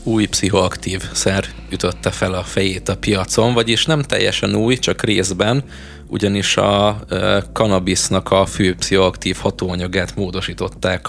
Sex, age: male, 20-39